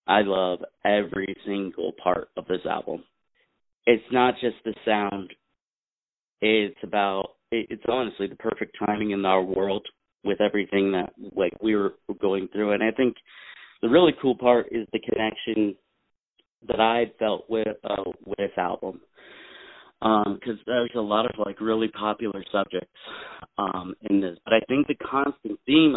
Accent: American